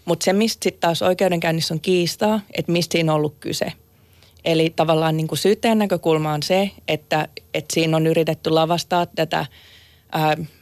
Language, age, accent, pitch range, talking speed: Finnish, 30-49, native, 160-180 Hz, 160 wpm